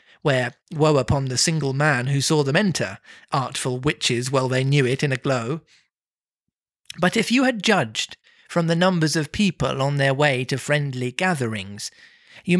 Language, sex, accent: English, male, British